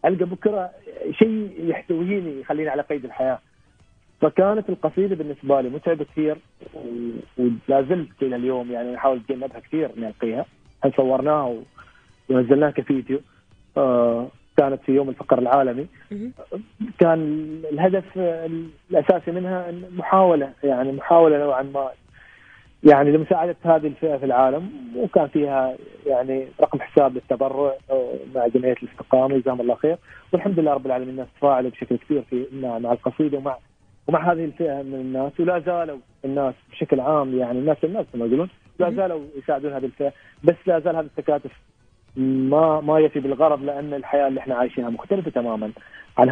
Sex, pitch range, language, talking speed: male, 130-165 Hz, Arabic, 140 wpm